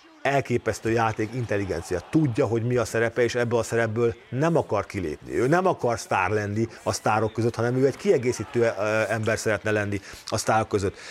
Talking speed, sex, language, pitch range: 180 wpm, male, Hungarian, 115-145 Hz